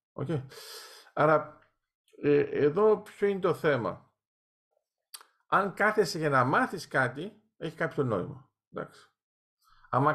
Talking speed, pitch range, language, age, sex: 110 wpm, 130-190 Hz, Greek, 50-69, male